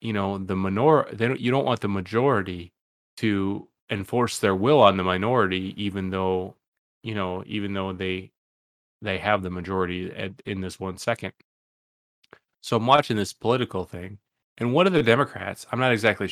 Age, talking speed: 30-49, 175 wpm